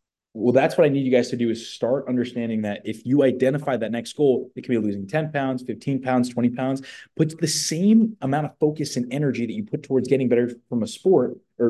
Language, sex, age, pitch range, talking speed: English, male, 20-39, 110-135 Hz, 240 wpm